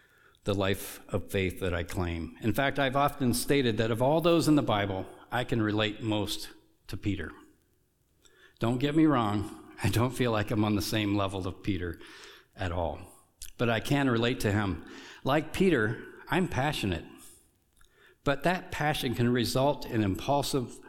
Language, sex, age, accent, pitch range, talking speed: English, male, 60-79, American, 100-135 Hz, 170 wpm